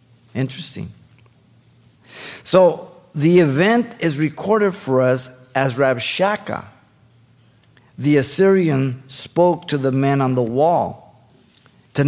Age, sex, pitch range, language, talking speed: 50-69, male, 125-180 Hz, English, 100 wpm